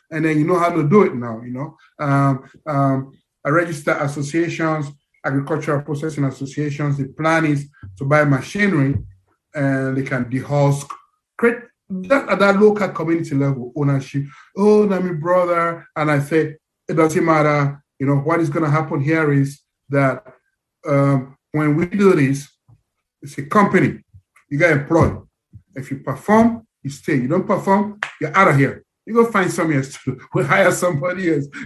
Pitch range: 145-195 Hz